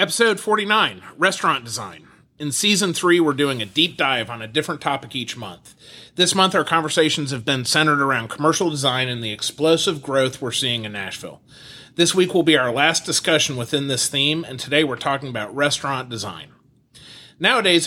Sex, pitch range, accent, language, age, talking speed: male, 130-165 Hz, American, English, 30-49, 180 wpm